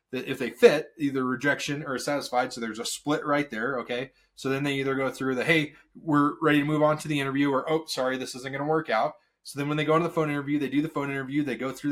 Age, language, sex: 20-39, English, male